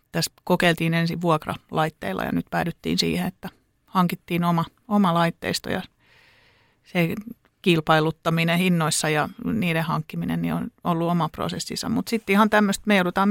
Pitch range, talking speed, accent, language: 160-185 Hz, 140 wpm, native, Finnish